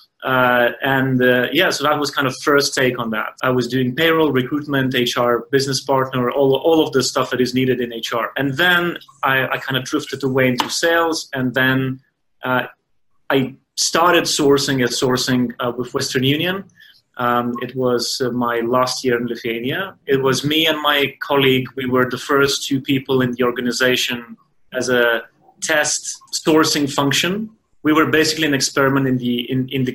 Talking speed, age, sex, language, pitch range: 185 wpm, 30-49, male, English, 125-140 Hz